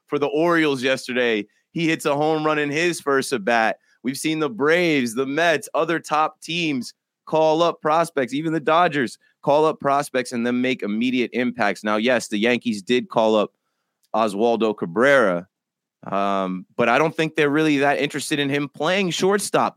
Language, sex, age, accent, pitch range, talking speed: English, male, 30-49, American, 110-145 Hz, 175 wpm